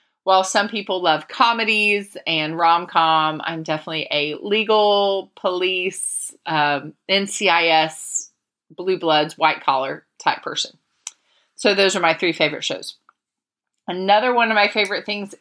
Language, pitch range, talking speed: English, 160-210 Hz, 130 wpm